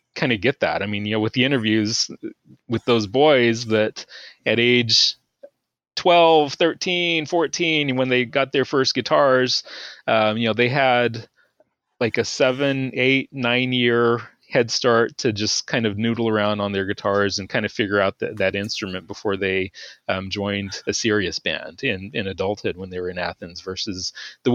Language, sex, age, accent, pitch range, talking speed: English, male, 30-49, American, 100-120 Hz, 175 wpm